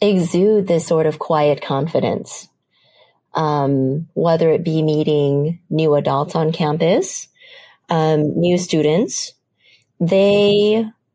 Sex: female